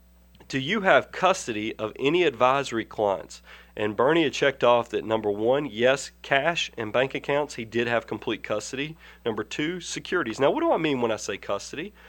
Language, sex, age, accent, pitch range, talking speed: English, male, 40-59, American, 105-140 Hz, 190 wpm